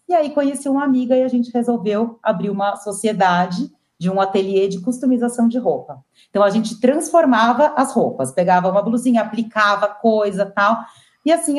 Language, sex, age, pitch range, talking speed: Portuguese, female, 40-59, 180-250 Hz, 175 wpm